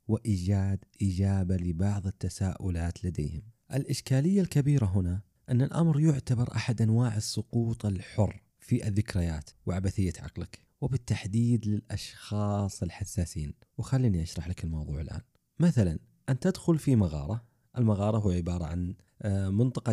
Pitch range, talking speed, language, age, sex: 90-125 Hz, 110 wpm, Arabic, 30-49, male